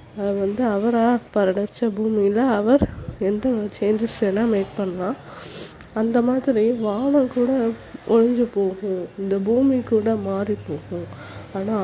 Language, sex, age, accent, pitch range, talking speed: Tamil, female, 20-39, native, 185-225 Hz, 110 wpm